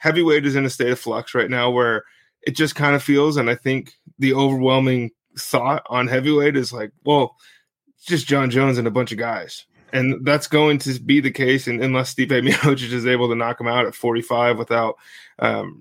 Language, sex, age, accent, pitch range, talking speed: English, male, 20-39, American, 125-145 Hz, 215 wpm